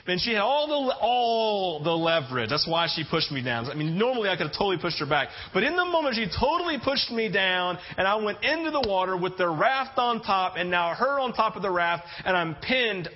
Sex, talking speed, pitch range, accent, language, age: male, 250 wpm, 150-235 Hz, American, English, 40-59